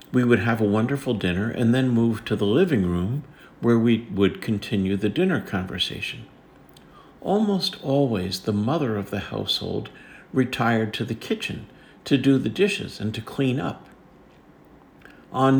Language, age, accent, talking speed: English, 60-79, American, 155 wpm